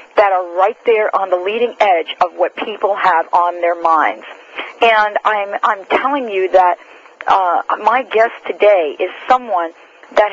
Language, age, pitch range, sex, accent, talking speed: English, 50-69, 185-240 Hz, female, American, 165 wpm